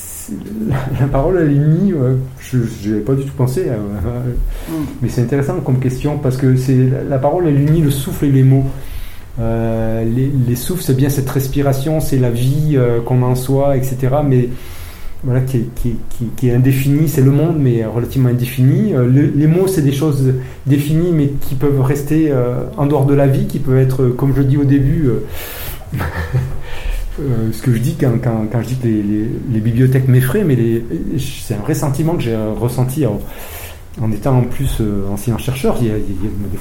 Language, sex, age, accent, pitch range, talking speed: French, male, 30-49, French, 115-140 Hz, 205 wpm